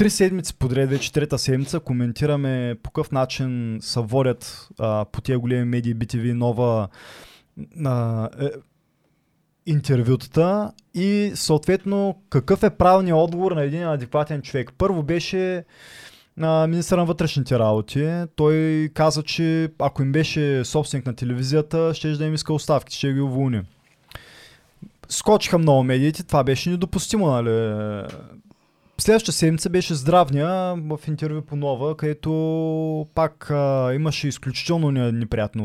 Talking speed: 130 wpm